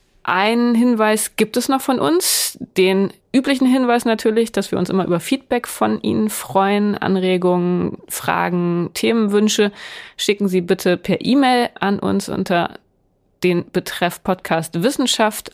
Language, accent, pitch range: German, German, 180-225 Hz